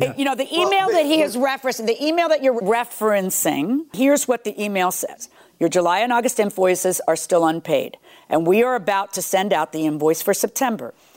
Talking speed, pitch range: 200 wpm, 175-235 Hz